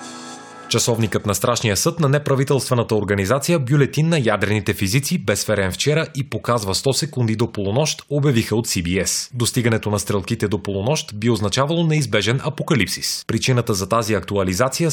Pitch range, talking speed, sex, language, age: 105-145 Hz, 140 wpm, male, Bulgarian, 30-49